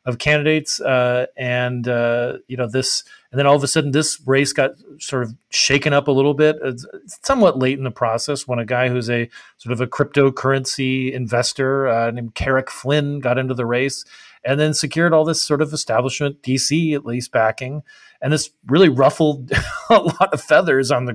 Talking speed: 200 wpm